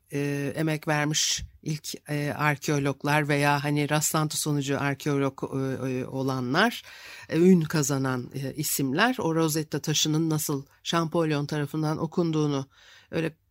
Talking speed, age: 120 wpm, 60-79